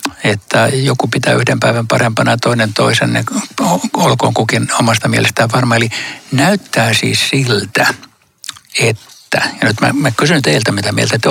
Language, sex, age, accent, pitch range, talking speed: Finnish, male, 60-79, native, 110-135 Hz, 145 wpm